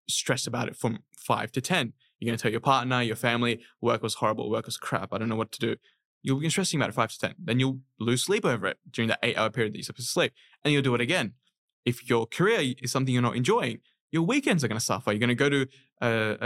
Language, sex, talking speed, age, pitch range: English, male, 275 wpm, 20-39, 115-135 Hz